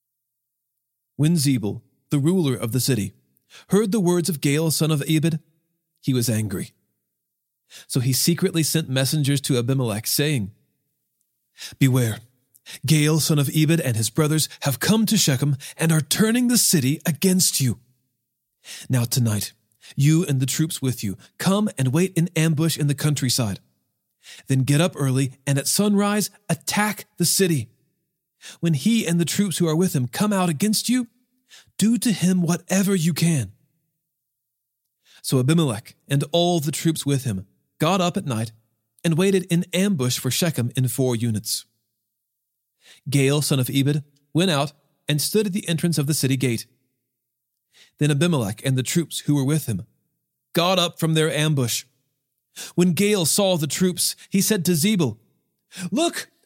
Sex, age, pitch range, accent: male, 40-59, 125-175 Hz, American